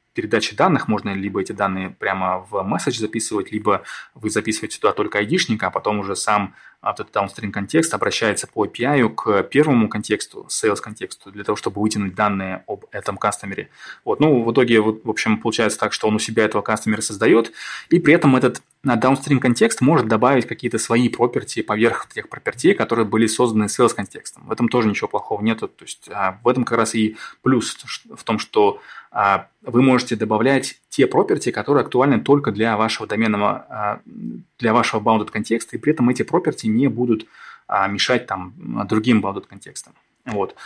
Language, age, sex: Russian, 20-39, male